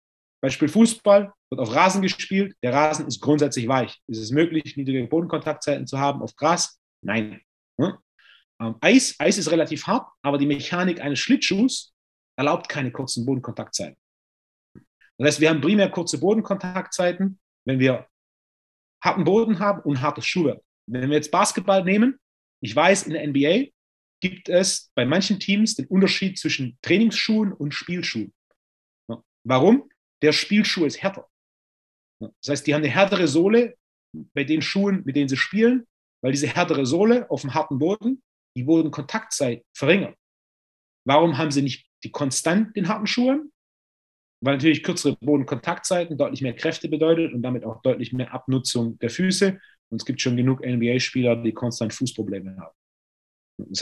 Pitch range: 130-195 Hz